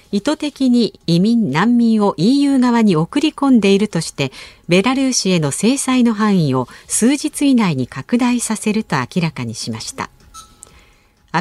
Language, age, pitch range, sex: Japanese, 50-69, 165-245 Hz, female